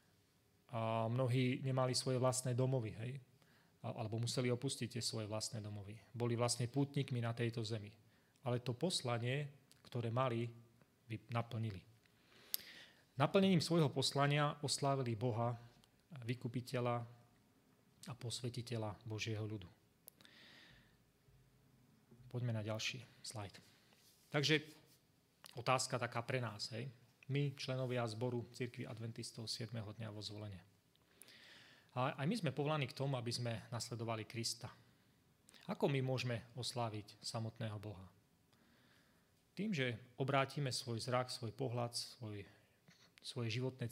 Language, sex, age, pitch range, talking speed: Slovak, male, 30-49, 115-130 Hz, 110 wpm